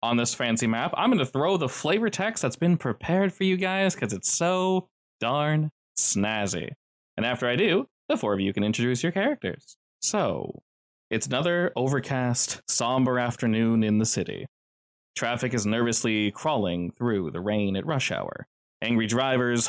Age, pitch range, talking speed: 20-39, 110-160 Hz, 170 wpm